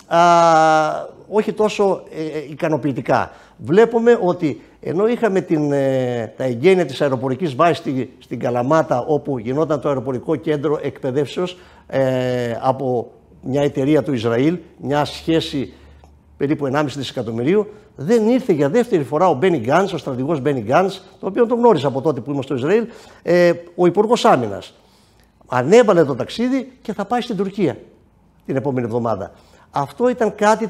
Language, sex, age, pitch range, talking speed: Greek, male, 50-69, 140-195 Hz, 150 wpm